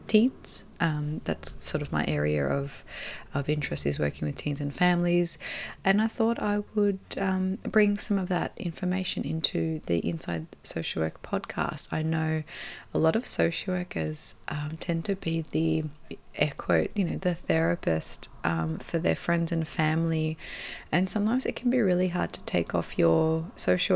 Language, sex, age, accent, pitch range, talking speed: English, female, 20-39, Australian, 135-195 Hz, 170 wpm